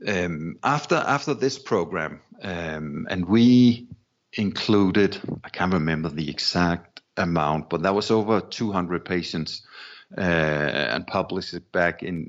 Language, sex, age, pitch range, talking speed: English, male, 50-69, 85-105 Hz, 115 wpm